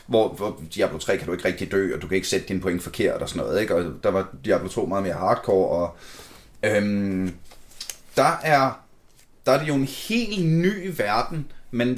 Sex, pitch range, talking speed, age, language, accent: male, 110-155 Hz, 210 wpm, 30-49, Danish, native